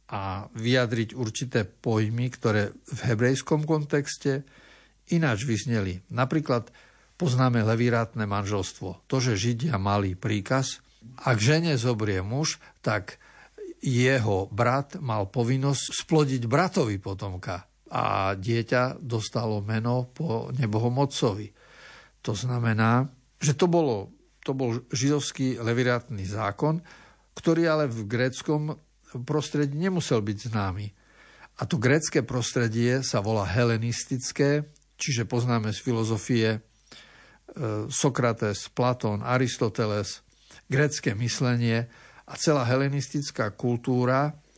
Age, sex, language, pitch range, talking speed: 50-69, male, Slovak, 110-140 Hz, 100 wpm